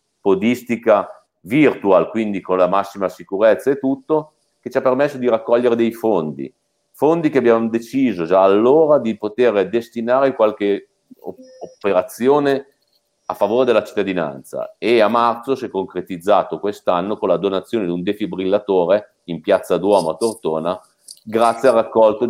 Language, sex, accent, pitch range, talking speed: Italian, male, native, 95-120 Hz, 140 wpm